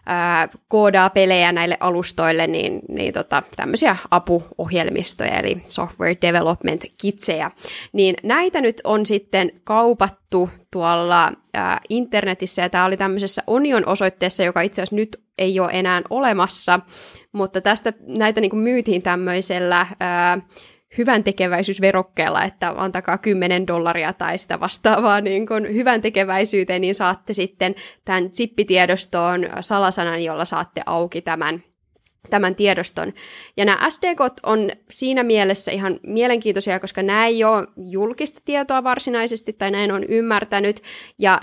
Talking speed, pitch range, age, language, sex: 115 wpm, 180-215 Hz, 20-39, Finnish, female